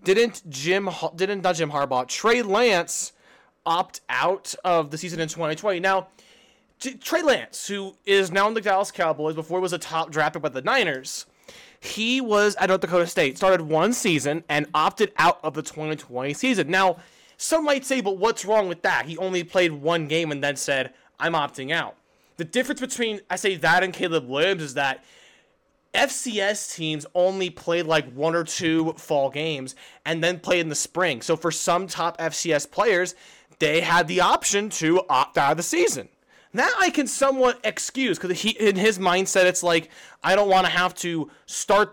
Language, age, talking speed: English, 20-39, 190 wpm